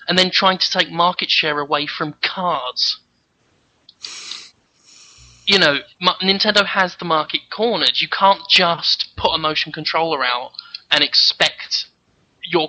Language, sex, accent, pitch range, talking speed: English, male, British, 160-210 Hz, 130 wpm